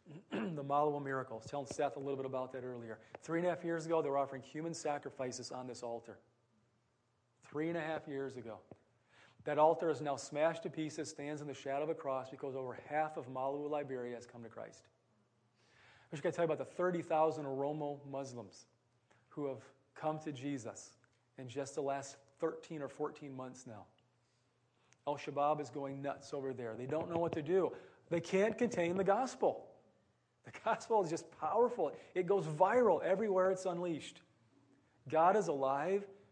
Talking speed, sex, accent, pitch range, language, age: 185 wpm, male, American, 125-155 Hz, English, 40-59